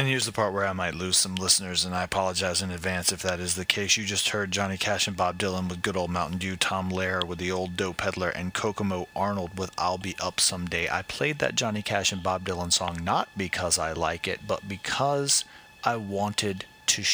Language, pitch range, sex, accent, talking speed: English, 90-130 Hz, male, American, 235 wpm